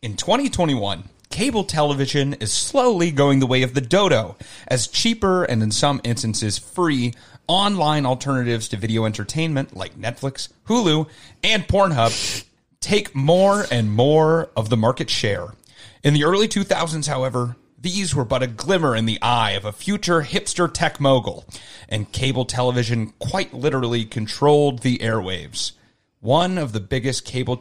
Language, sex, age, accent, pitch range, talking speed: English, male, 30-49, American, 115-150 Hz, 150 wpm